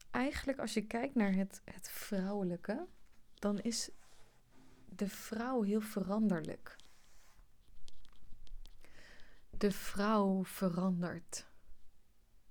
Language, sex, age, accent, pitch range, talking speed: Dutch, female, 30-49, Dutch, 180-215 Hz, 80 wpm